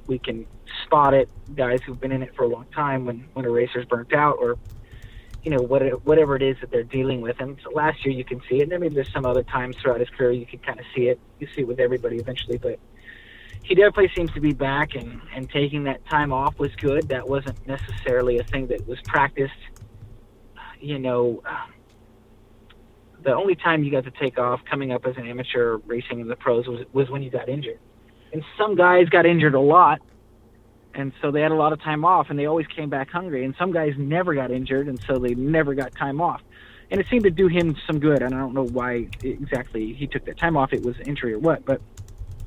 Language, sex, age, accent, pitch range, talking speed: English, male, 30-49, American, 120-145 Hz, 240 wpm